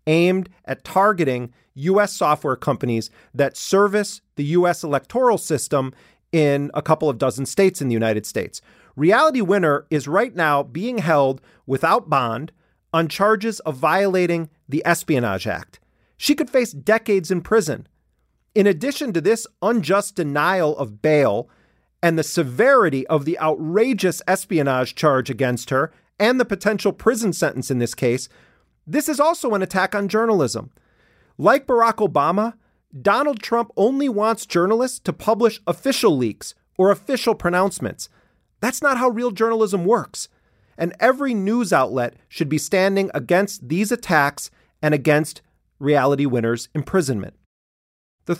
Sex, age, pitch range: male, 40-59, 145-210 Hz